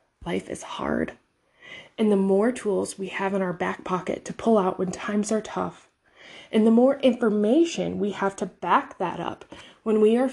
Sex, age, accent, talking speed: female, 20-39, American, 190 wpm